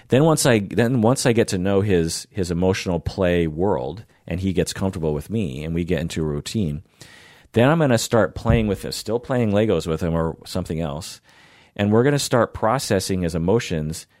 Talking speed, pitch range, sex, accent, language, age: 210 wpm, 80-110 Hz, male, American, English, 40-59